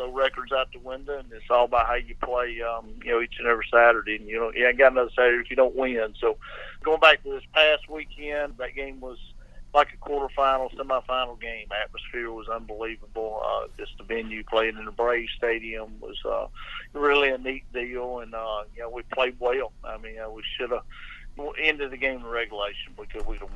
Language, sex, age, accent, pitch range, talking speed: English, male, 50-69, American, 115-130 Hz, 215 wpm